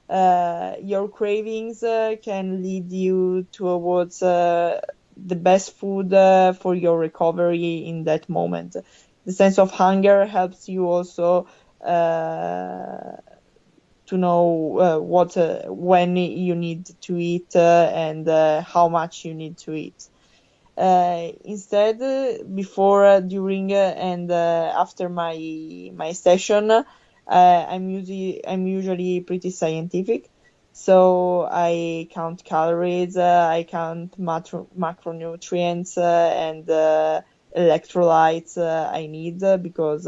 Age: 20-39